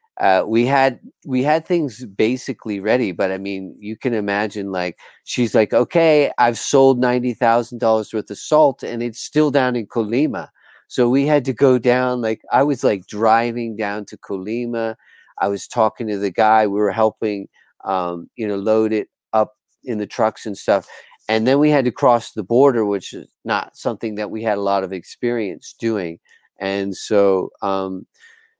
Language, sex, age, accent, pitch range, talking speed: Spanish, male, 40-59, American, 105-130 Hz, 185 wpm